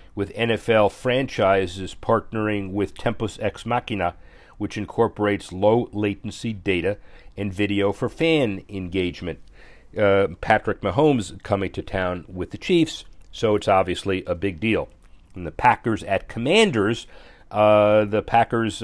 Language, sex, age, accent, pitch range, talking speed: English, male, 50-69, American, 95-110 Hz, 130 wpm